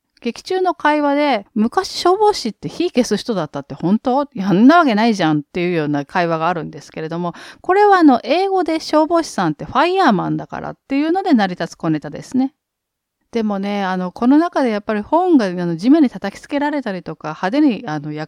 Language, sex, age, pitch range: Japanese, female, 40-59, 175-295 Hz